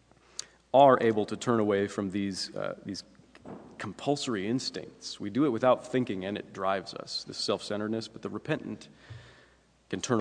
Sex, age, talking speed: male, 30-49, 160 wpm